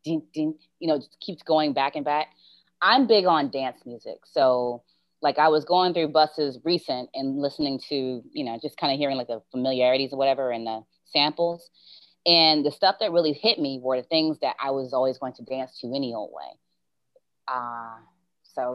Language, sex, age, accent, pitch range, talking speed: English, female, 30-49, American, 125-160 Hz, 200 wpm